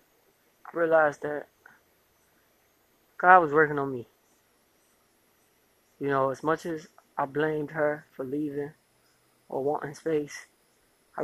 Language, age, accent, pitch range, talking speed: English, 20-39, American, 135-155 Hz, 110 wpm